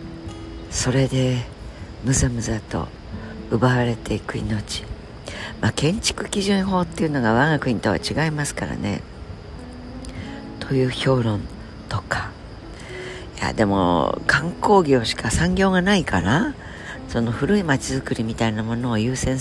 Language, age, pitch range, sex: Japanese, 60-79, 100-140 Hz, female